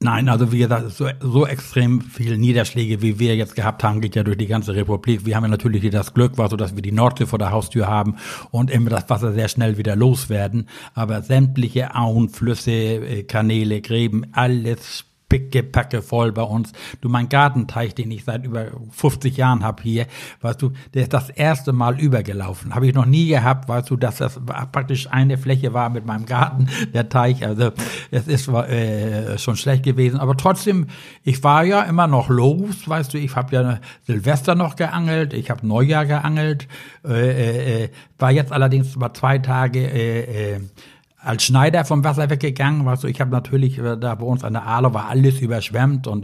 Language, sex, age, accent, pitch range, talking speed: German, male, 60-79, German, 115-135 Hz, 195 wpm